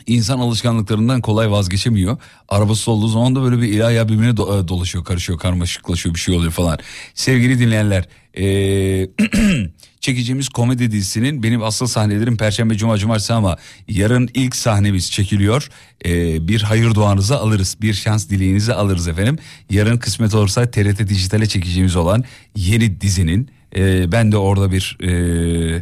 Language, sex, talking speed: Turkish, male, 140 wpm